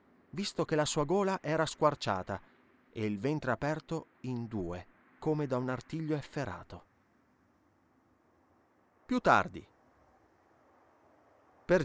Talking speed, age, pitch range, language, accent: 105 wpm, 30-49, 115-165 Hz, Italian, native